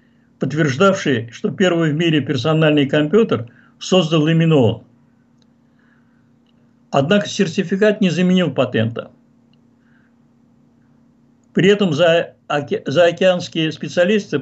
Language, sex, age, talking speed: Russian, male, 50-69, 85 wpm